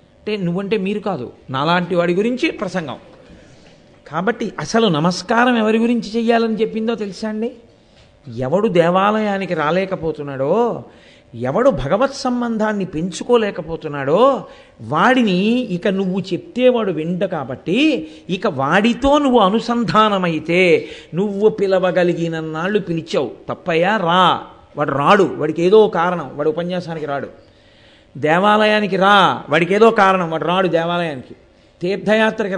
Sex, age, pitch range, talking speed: male, 50-69, 165-215 Hz, 105 wpm